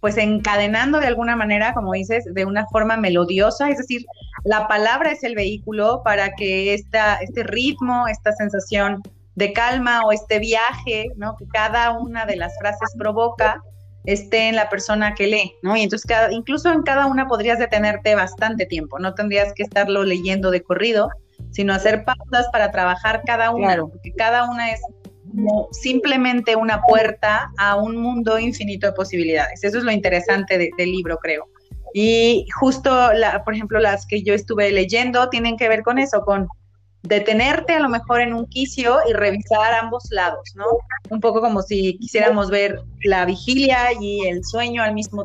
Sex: female